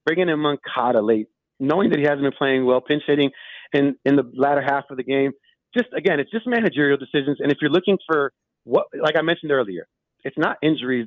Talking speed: 215 wpm